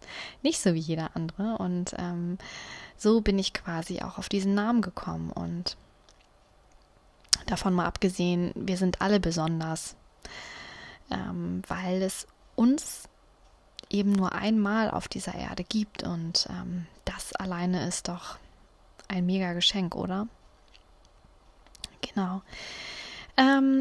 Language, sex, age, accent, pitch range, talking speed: German, female, 20-39, German, 185-215 Hz, 120 wpm